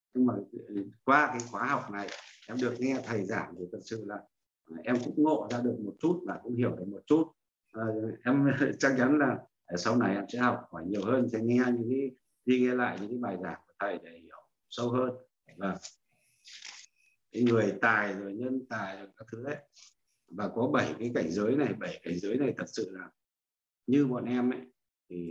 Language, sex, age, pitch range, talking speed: Vietnamese, male, 60-79, 100-125 Hz, 210 wpm